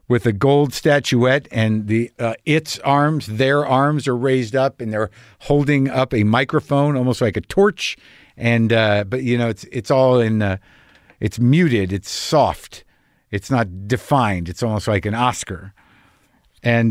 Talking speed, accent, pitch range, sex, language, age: 165 wpm, American, 105-140 Hz, male, English, 50-69